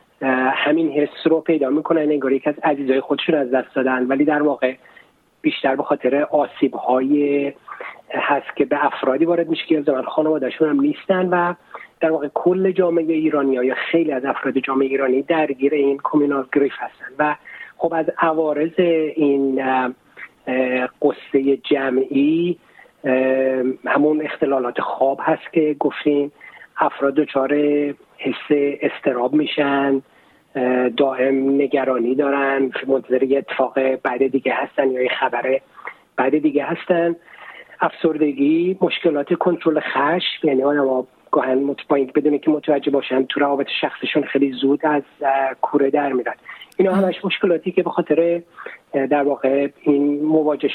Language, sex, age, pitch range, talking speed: Persian, male, 30-49, 135-155 Hz, 135 wpm